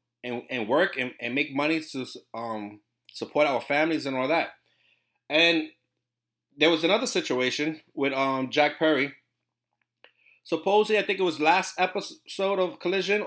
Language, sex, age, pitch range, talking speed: English, male, 30-49, 110-150 Hz, 150 wpm